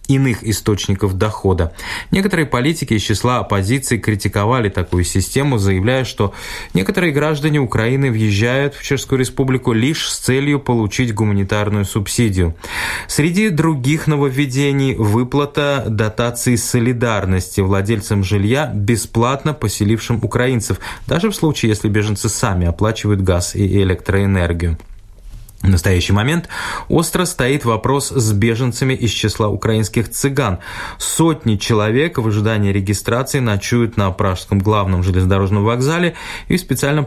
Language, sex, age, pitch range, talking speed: Russian, male, 20-39, 100-130 Hz, 120 wpm